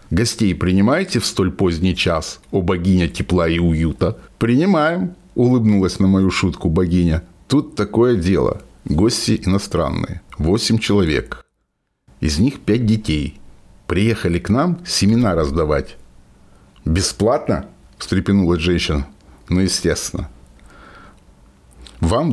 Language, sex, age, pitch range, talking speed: Russian, male, 60-79, 90-115 Hz, 105 wpm